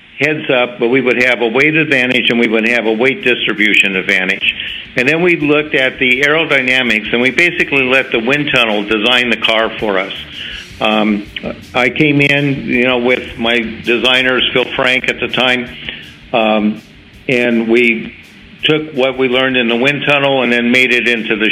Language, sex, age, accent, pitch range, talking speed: English, male, 60-79, American, 110-130 Hz, 185 wpm